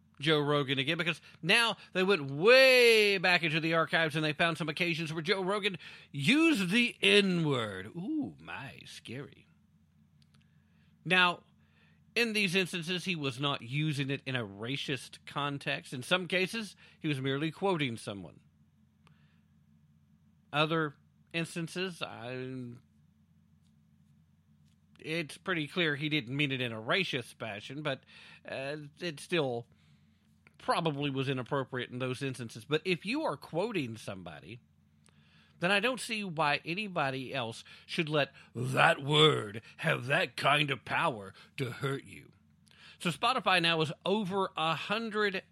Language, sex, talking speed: English, male, 135 wpm